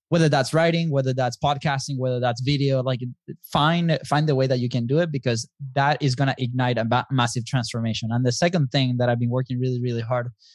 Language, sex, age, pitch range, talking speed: English, male, 20-39, 120-140 Hz, 220 wpm